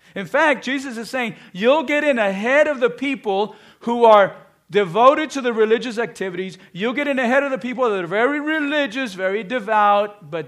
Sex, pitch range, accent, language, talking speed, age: male, 165-240 Hz, American, English, 190 wpm, 50-69